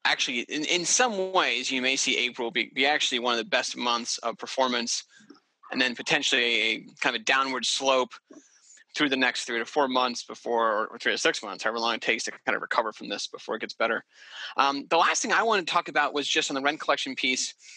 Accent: American